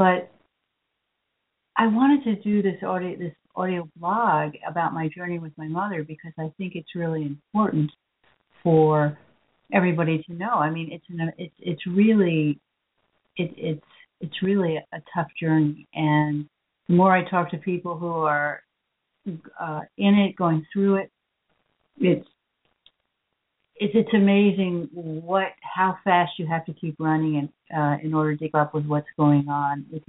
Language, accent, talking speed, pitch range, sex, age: English, American, 160 wpm, 155-185 Hz, female, 60-79